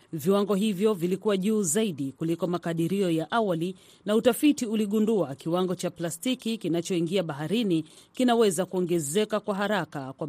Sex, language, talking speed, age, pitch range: female, Swahili, 130 wpm, 40-59, 170-220 Hz